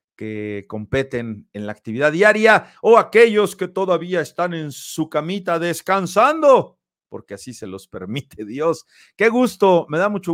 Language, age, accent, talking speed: Spanish, 50-69, Mexican, 150 wpm